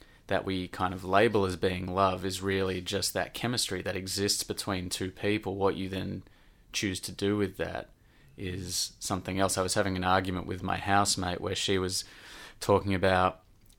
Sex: male